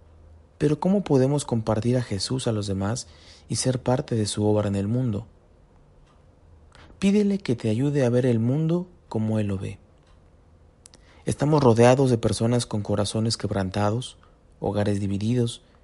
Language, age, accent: Spanish, 40-59, Mexican